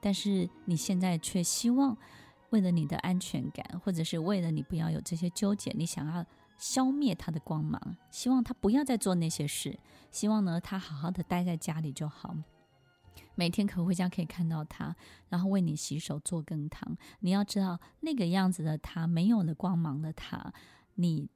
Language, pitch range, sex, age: Chinese, 165-205 Hz, female, 20-39